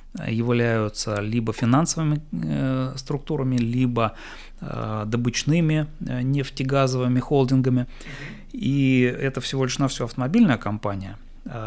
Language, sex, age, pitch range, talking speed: Russian, male, 30-49, 110-135 Hz, 95 wpm